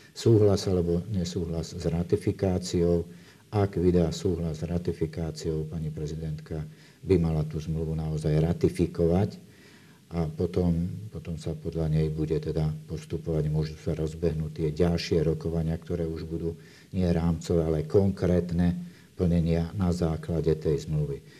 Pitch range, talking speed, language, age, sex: 80-90 Hz, 125 wpm, Slovak, 50-69, male